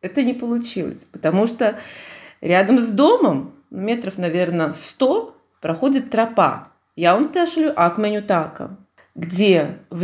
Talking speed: 115 wpm